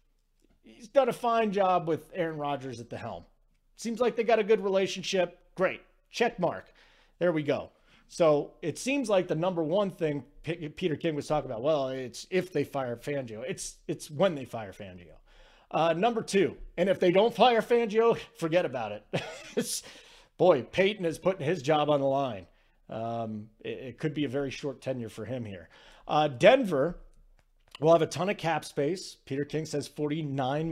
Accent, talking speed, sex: American, 190 wpm, male